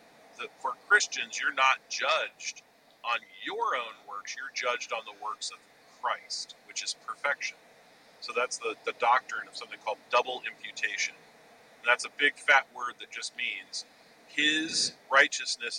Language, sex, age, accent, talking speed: English, male, 40-59, American, 155 wpm